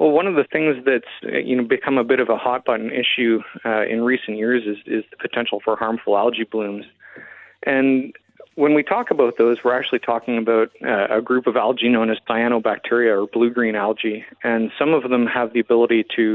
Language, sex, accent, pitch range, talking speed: English, male, American, 110-125 Hz, 205 wpm